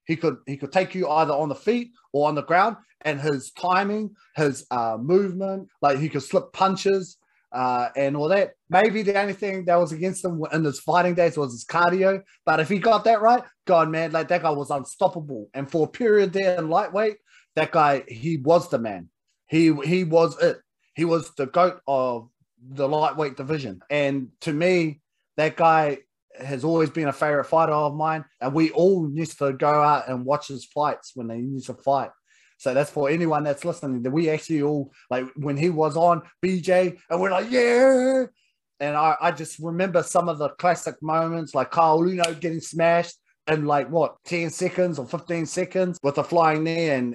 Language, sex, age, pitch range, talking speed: English, male, 30-49, 145-180 Hz, 200 wpm